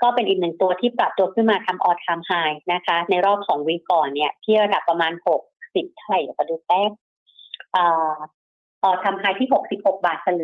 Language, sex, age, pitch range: Thai, female, 30-49, 175-220 Hz